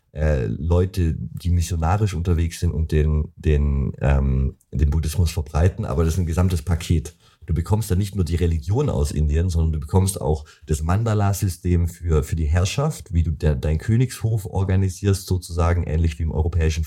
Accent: German